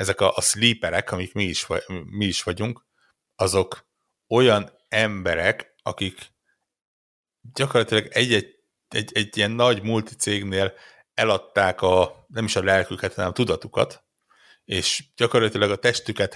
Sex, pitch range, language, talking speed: male, 95-110 Hz, Hungarian, 115 wpm